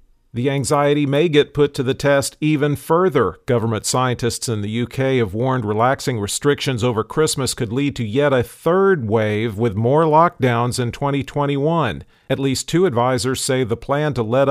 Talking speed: 175 wpm